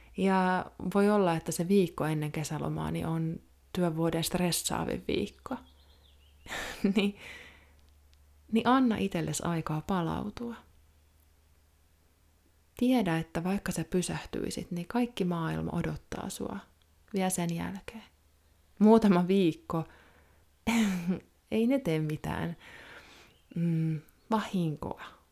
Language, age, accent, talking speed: Finnish, 20-39, native, 95 wpm